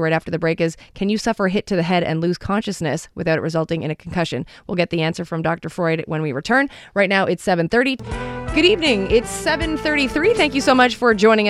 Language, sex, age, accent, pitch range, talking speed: English, female, 30-49, American, 170-205 Hz, 240 wpm